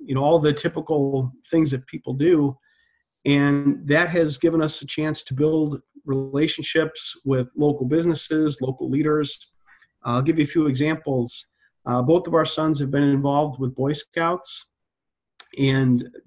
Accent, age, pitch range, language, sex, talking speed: American, 40-59, 135-160 Hz, English, male, 160 wpm